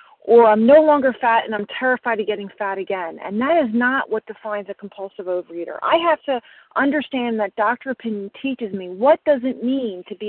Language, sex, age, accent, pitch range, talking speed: English, female, 40-59, American, 225-295 Hz, 210 wpm